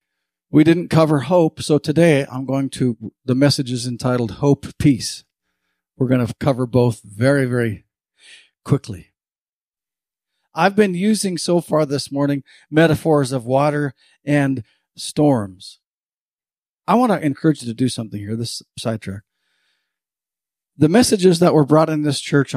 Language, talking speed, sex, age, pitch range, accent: English, 145 wpm, male, 50-69, 115-150 Hz, American